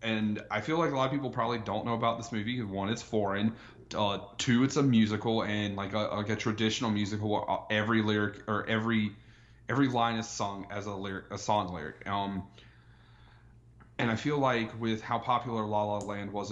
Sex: male